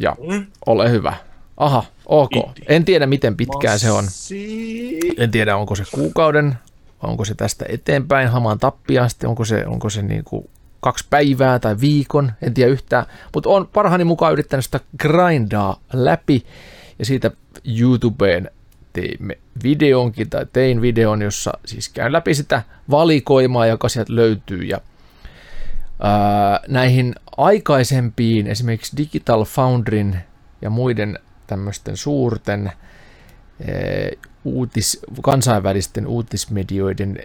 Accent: native